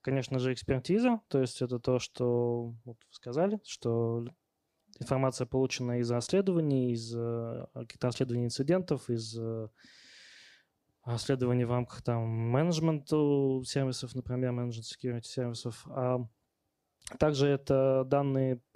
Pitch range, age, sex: 120-135 Hz, 20-39, male